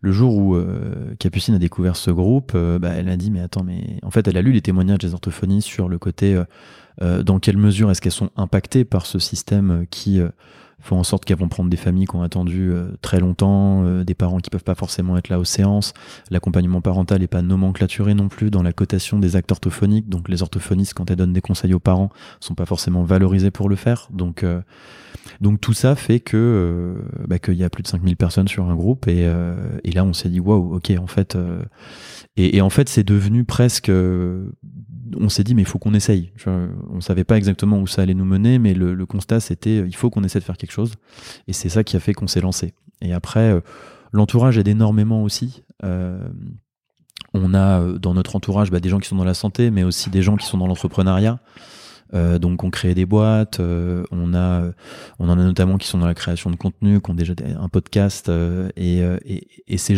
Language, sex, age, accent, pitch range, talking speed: French, male, 20-39, French, 90-105 Hz, 240 wpm